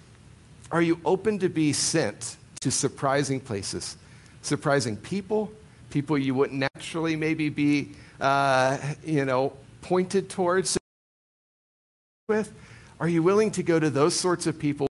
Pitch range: 130-170 Hz